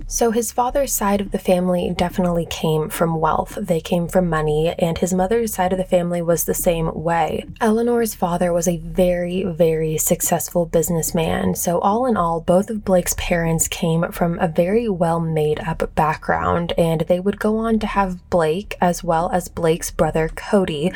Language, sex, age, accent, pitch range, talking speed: English, female, 20-39, American, 170-205 Hz, 180 wpm